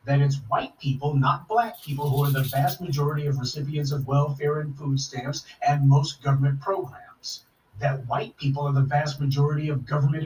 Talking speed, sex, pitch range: 185 wpm, male, 135-145 Hz